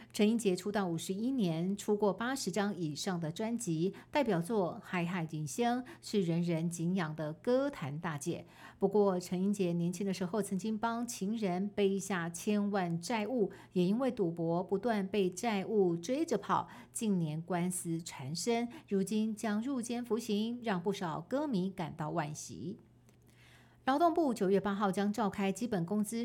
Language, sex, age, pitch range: Chinese, female, 50-69, 175-220 Hz